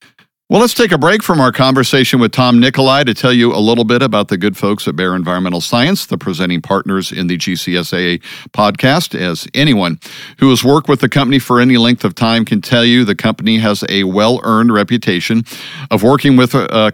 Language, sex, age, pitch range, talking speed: English, male, 50-69, 105-140 Hz, 205 wpm